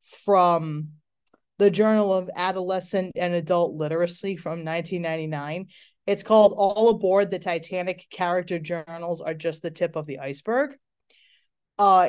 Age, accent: 30-49, American